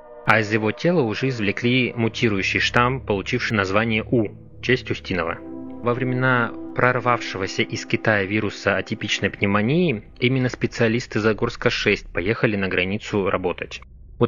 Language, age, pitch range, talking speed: Russian, 20-39, 100-120 Hz, 120 wpm